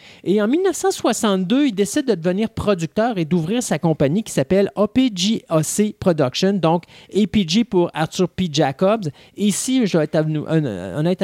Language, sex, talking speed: French, male, 150 wpm